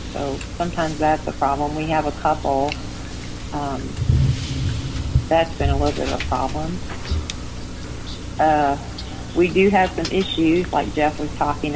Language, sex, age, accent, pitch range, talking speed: English, female, 50-69, American, 140-165 Hz, 145 wpm